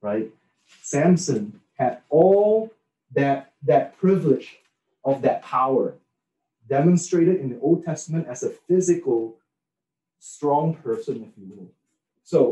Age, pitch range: 30-49, 130-175 Hz